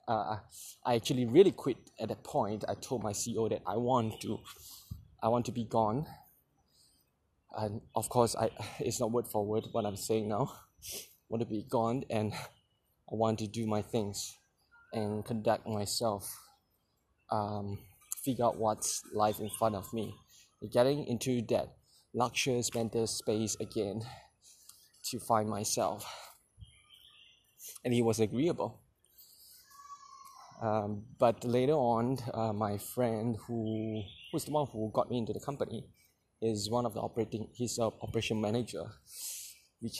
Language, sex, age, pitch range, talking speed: English, male, 20-39, 105-120 Hz, 150 wpm